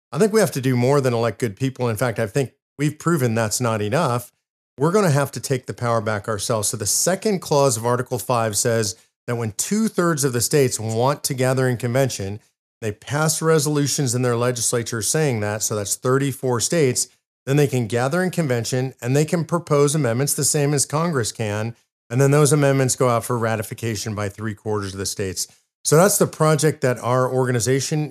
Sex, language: male, English